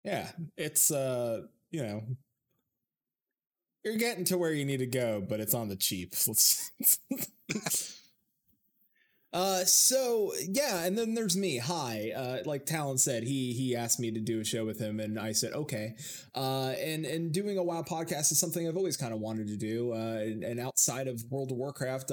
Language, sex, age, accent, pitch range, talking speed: English, male, 20-39, American, 115-135 Hz, 185 wpm